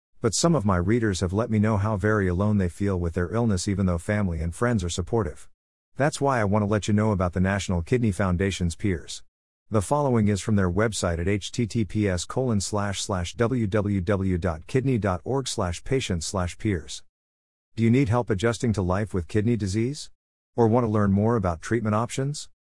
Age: 50-69